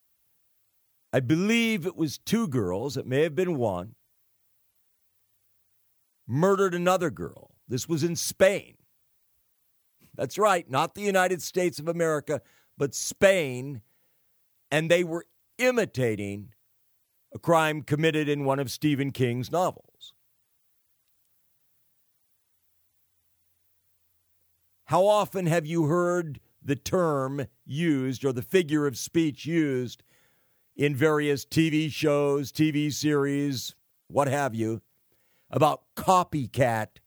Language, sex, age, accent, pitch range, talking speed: English, male, 50-69, American, 115-170 Hz, 105 wpm